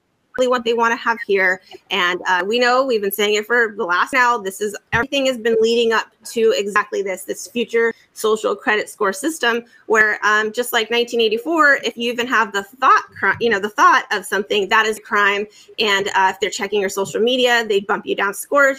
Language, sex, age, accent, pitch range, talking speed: English, female, 30-49, American, 200-265 Hz, 215 wpm